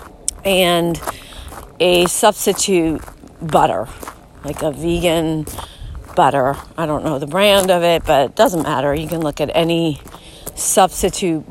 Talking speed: 130 wpm